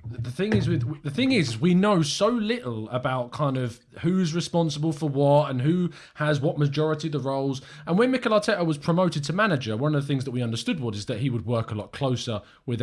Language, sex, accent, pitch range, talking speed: English, male, British, 115-160 Hz, 230 wpm